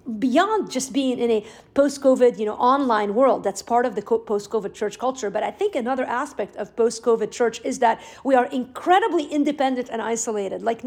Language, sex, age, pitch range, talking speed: English, female, 50-69, 220-275 Hz, 195 wpm